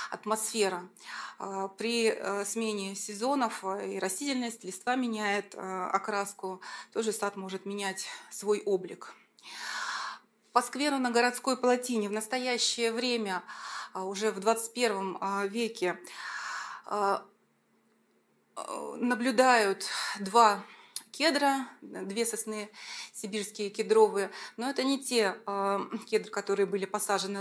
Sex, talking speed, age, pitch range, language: female, 90 wpm, 30-49, 195-230 Hz, Russian